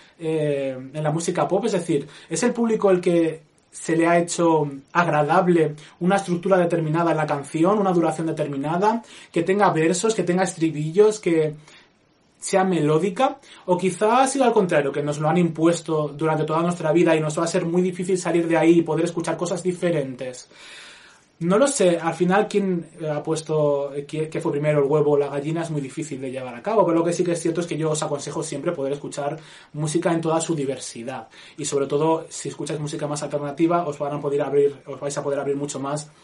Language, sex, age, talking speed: Spanish, male, 20-39, 215 wpm